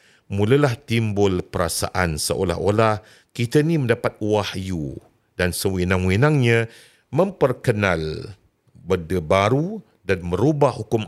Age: 50-69